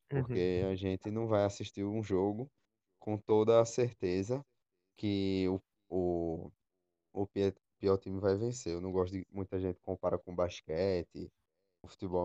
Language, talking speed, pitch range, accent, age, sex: Portuguese, 145 wpm, 90-105 Hz, Brazilian, 10-29, male